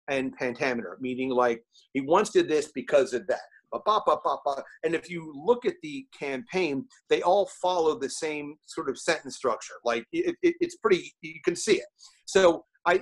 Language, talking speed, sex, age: English, 180 wpm, male, 40-59